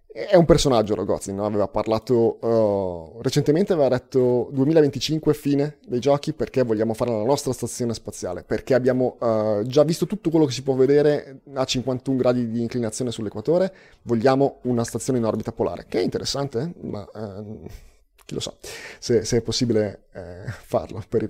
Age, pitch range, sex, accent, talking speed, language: 30-49, 110-145 Hz, male, native, 160 wpm, Italian